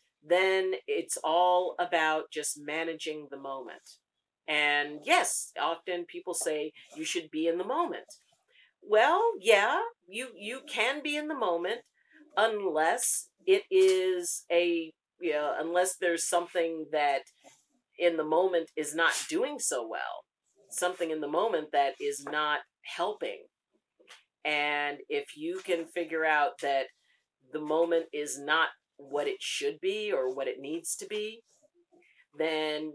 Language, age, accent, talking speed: English, 50-69, American, 140 wpm